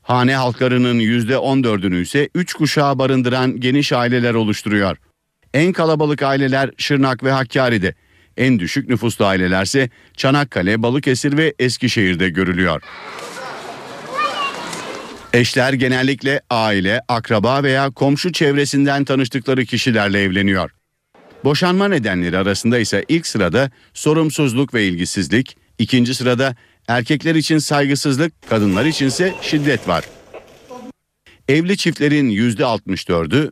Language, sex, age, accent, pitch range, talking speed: Turkish, male, 50-69, native, 105-140 Hz, 100 wpm